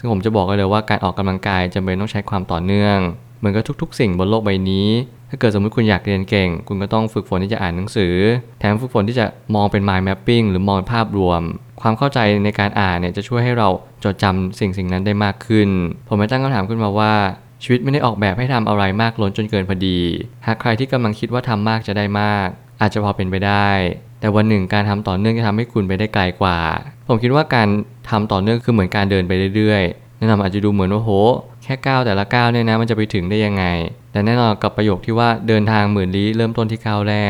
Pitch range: 95-115 Hz